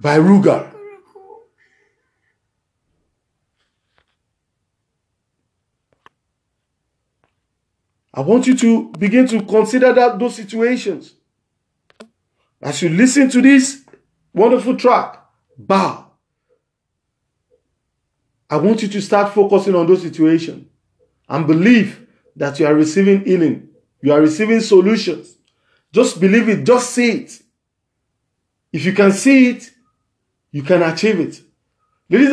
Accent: Nigerian